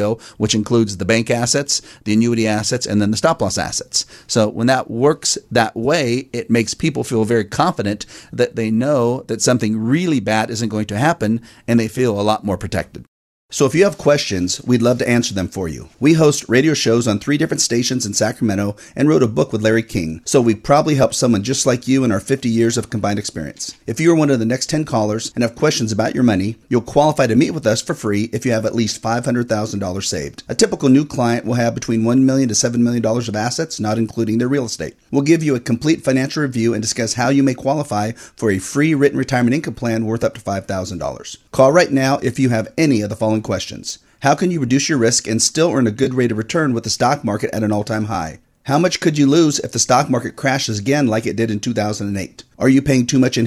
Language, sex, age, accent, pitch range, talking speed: English, male, 40-59, American, 110-135 Hz, 240 wpm